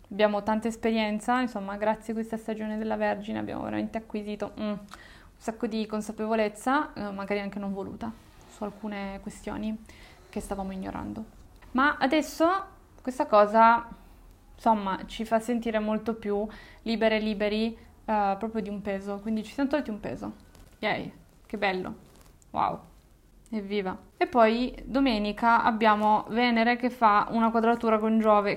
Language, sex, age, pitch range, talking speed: Italian, female, 20-39, 205-225 Hz, 145 wpm